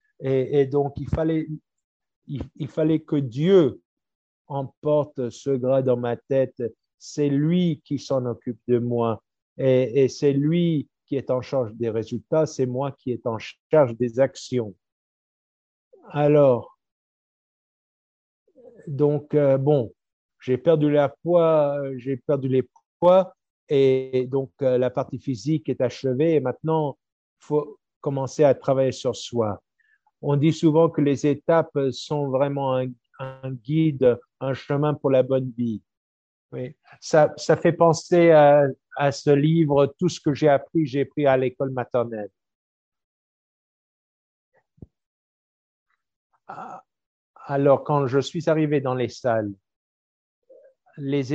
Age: 50-69